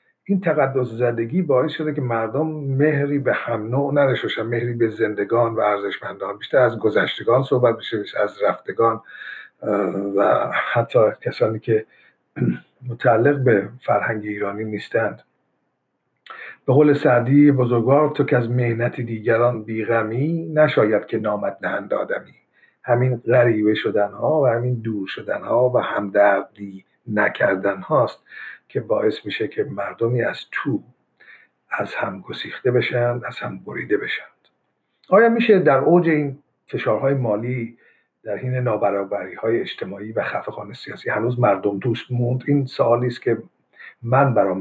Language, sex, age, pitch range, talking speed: Persian, male, 50-69, 110-140 Hz, 135 wpm